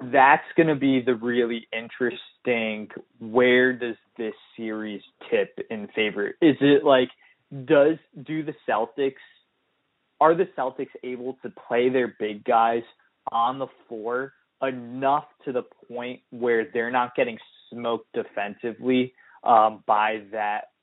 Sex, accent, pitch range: male, American, 115-145 Hz